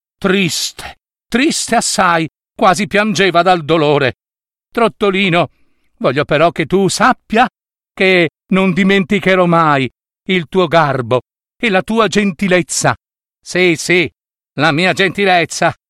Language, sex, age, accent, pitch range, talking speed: Italian, male, 50-69, native, 140-205 Hz, 110 wpm